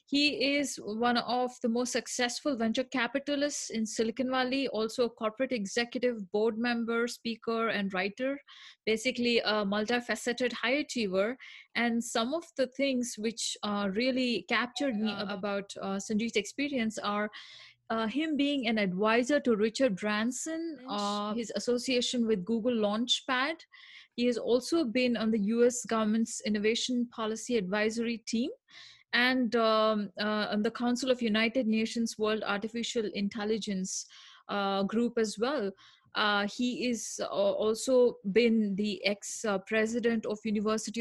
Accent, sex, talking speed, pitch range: Indian, female, 135 wpm, 210-250 Hz